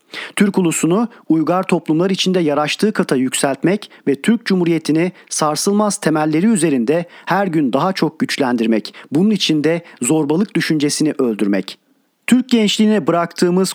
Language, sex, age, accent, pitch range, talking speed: Turkish, male, 40-59, native, 150-190 Hz, 120 wpm